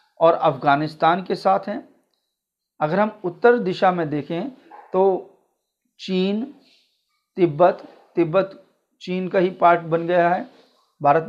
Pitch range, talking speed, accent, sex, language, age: 165-205 Hz, 120 wpm, native, male, Hindi, 50-69